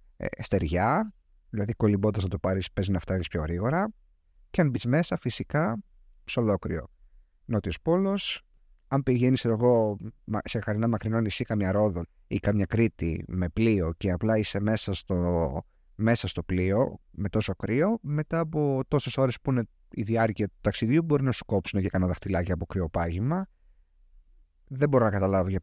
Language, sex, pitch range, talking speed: Greek, male, 90-135 Hz, 165 wpm